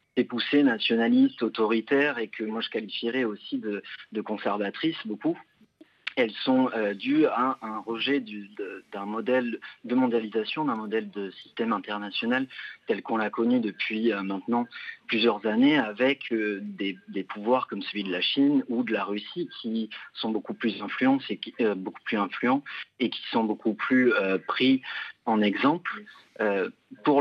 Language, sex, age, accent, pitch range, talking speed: French, male, 40-59, French, 105-135 Hz, 160 wpm